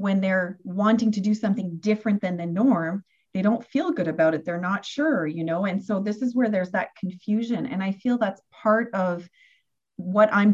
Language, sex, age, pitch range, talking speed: English, female, 40-59, 195-235 Hz, 210 wpm